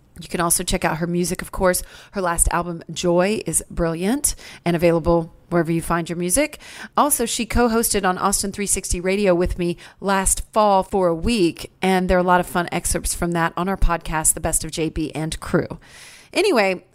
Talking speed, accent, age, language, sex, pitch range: 200 wpm, American, 40-59, English, female, 170-205 Hz